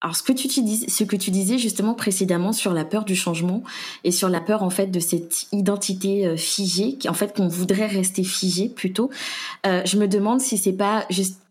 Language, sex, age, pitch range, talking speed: French, female, 20-39, 185-215 Hz, 220 wpm